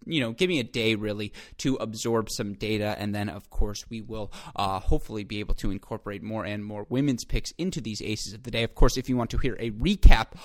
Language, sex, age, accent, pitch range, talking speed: English, male, 20-39, American, 110-135 Hz, 245 wpm